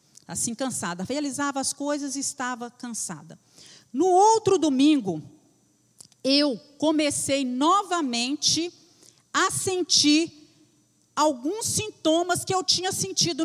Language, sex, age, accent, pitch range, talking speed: Portuguese, female, 40-59, Brazilian, 230-310 Hz, 100 wpm